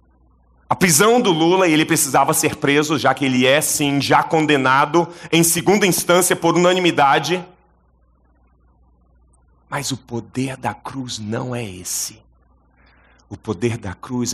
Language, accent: English, Brazilian